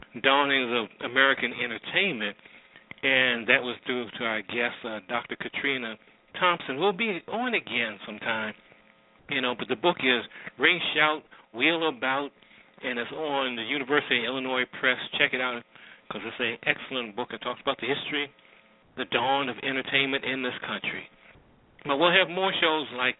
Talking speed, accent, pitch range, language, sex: 165 wpm, American, 120-140 Hz, English, male